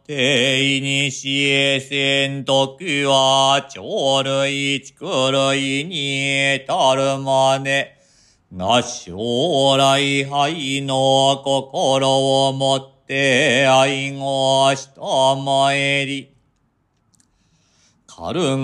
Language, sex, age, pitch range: Japanese, male, 40-59, 135-140 Hz